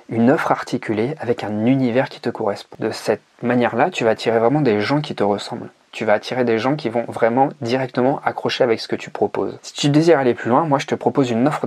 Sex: male